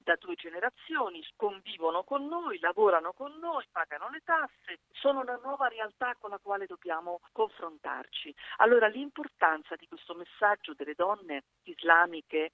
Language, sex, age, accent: Italian, female, 50-69, native